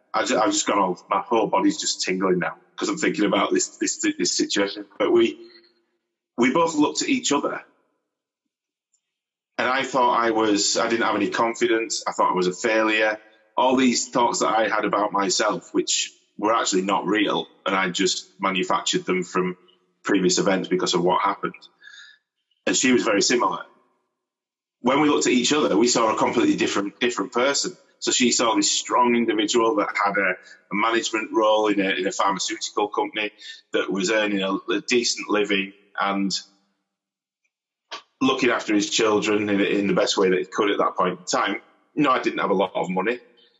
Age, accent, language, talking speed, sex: 30-49, British, English, 185 wpm, male